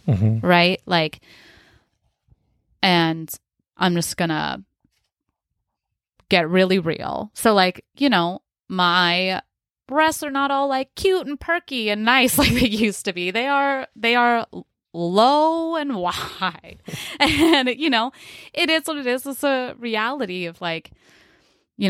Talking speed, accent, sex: 135 wpm, American, female